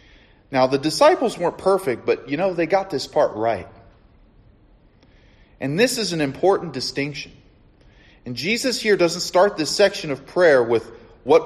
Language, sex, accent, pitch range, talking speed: English, male, American, 100-150 Hz, 155 wpm